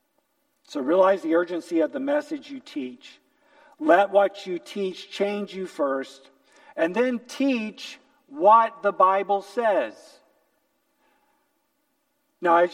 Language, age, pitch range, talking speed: English, 50-69, 195-295 Hz, 120 wpm